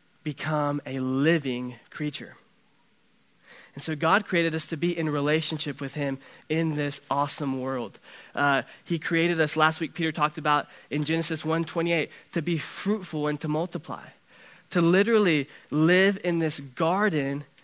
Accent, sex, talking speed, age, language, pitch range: American, male, 155 wpm, 20-39, English, 140-165 Hz